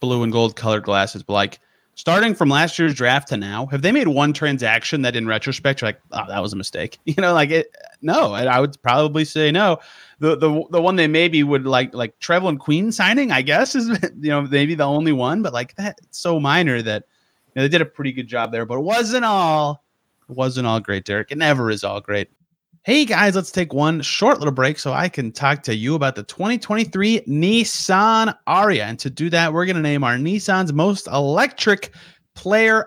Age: 30-49